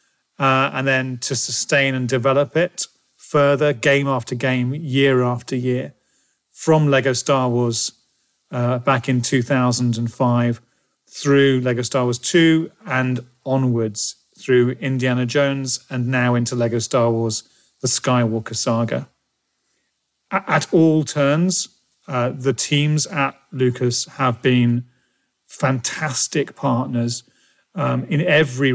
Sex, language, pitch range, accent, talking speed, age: male, English, 125-140 Hz, British, 120 wpm, 40-59